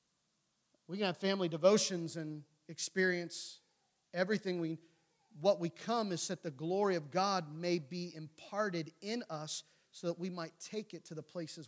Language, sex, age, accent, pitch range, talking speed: English, male, 40-59, American, 165-205 Hz, 165 wpm